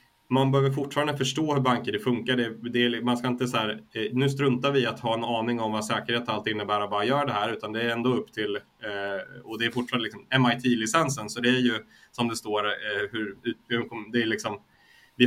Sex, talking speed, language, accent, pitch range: male, 230 wpm, Swedish, native, 110-130 Hz